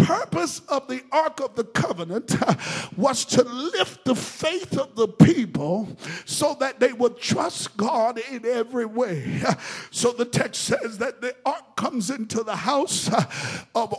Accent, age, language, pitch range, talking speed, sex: American, 50-69, English, 230-275 Hz, 155 wpm, male